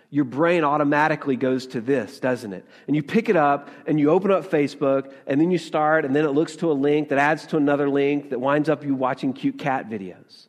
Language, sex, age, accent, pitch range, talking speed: English, male, 40-59, American, 135-170 Hz, 240 wpm